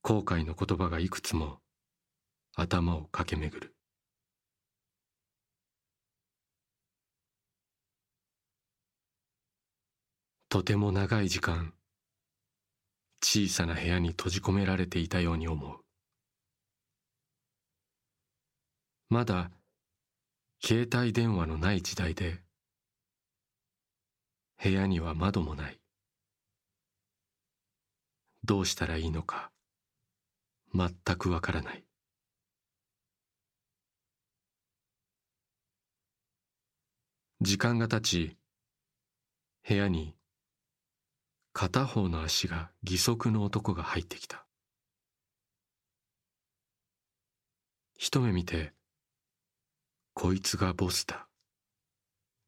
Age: 40-59